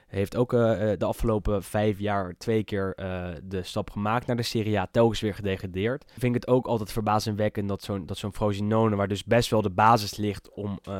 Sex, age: male, 10-29